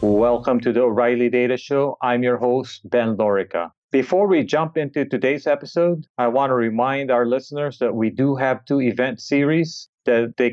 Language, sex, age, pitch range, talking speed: English, male, 40-59, 120-150 Hz, 180 wpm